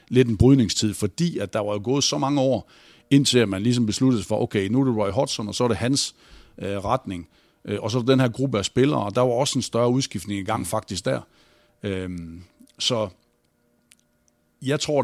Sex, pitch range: male, 100-130 Hz